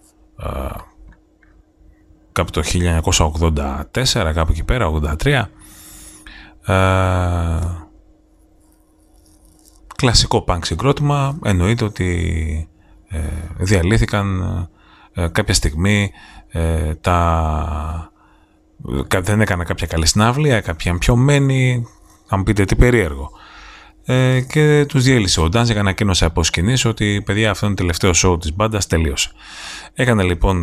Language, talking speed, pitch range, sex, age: Greek, 90 wpm, 80-110 Hz, male, 30-49